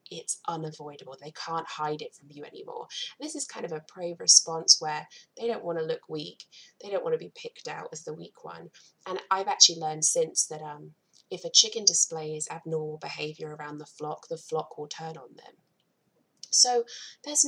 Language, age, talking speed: English, 20-39, 200 wpm